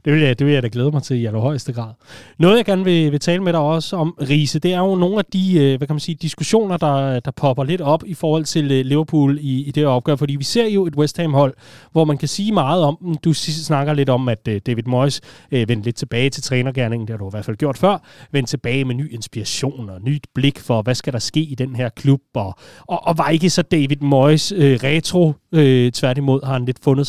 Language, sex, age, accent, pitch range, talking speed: Danish, male, 30-49, native, 135-175 Hz, 240 wpm